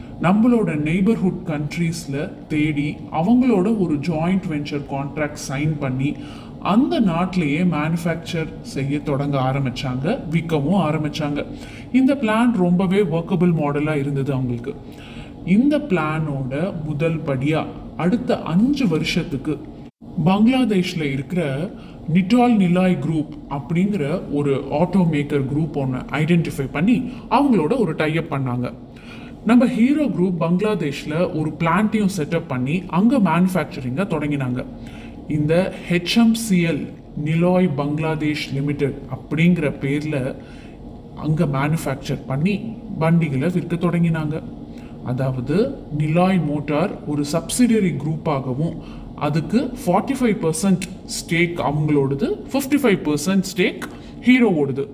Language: Tamil